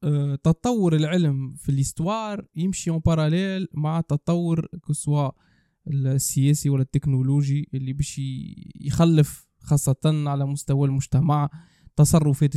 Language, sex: Arabic, male